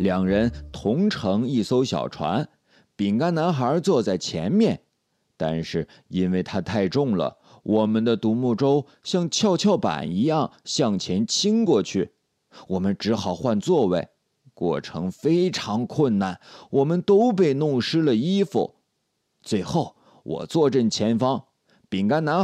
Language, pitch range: Chinese, 105-170 Hz